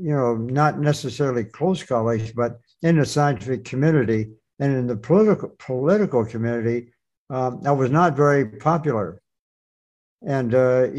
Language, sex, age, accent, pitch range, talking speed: English, male, 60-79, American, 120-150 Hz, 135 wpm